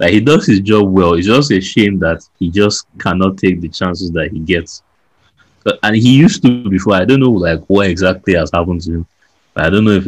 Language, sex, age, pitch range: English, male, 20-39, 85-95 Hz